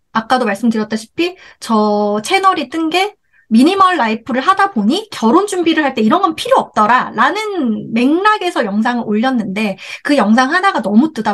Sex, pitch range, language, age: female, 215-295 Hz, Korean, 30-49